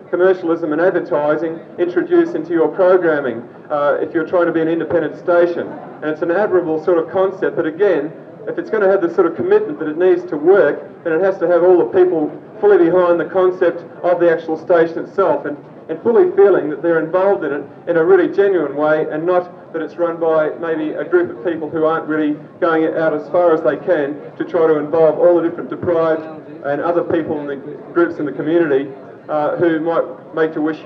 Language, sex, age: English, male, 40-59